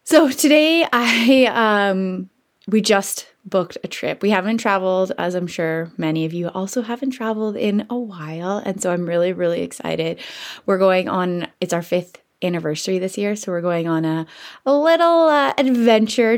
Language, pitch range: English, 180-240 Hz